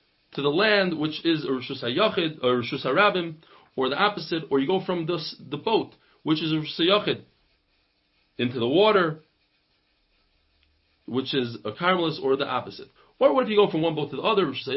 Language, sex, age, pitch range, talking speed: English, male, 40-59, 145-200 Hz, 165 wpm